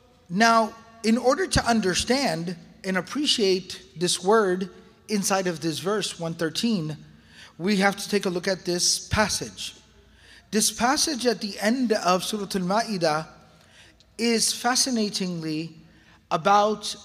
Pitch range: 170-225 Hz